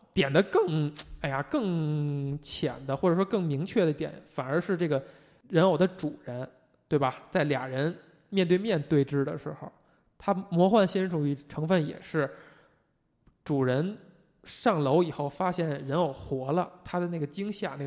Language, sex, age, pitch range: Chinese, male, 20-39, 145-185 Hz